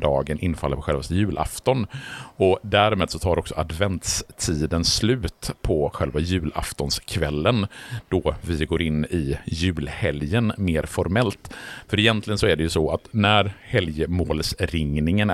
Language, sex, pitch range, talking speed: Swedish, male, 80-110 Hz, 135 wpm